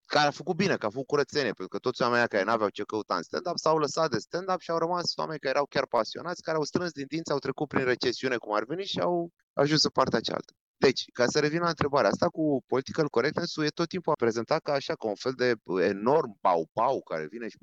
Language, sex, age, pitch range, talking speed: Romanian, male, 30-49, 125-160 Hz, 255 wpm